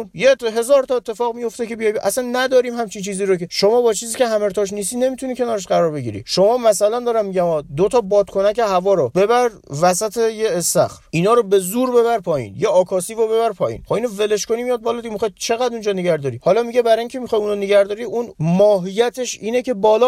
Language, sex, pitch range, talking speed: Persian, male, 190-235 Hz, 205 wpm